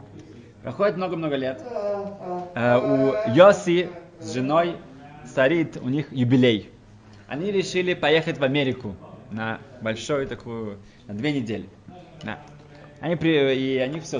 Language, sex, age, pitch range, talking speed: Russian, male, 20-39, 110-150 Hz, 115 wpm